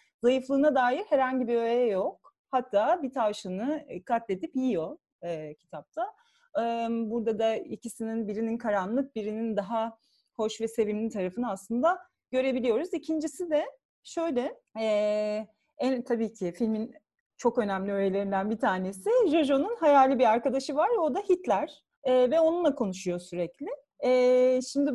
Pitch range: 225-300 Hz